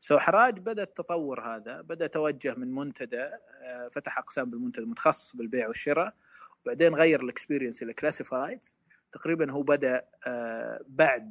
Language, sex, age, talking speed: Arabic, male, 20-39, 120 wpm